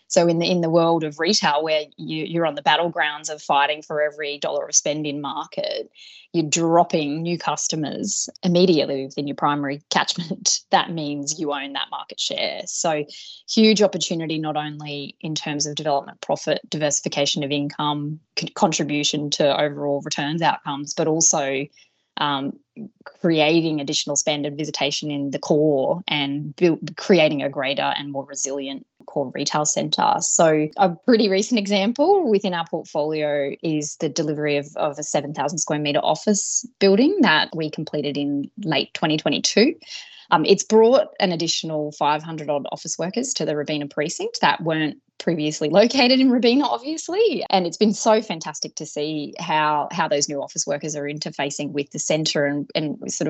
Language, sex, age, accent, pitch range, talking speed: English, female, 20-39, Australian, 150-180 Hz, 165 wpm